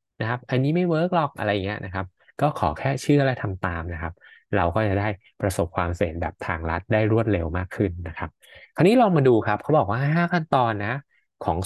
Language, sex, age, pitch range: Thai, male, 20-39, 90-130 Hz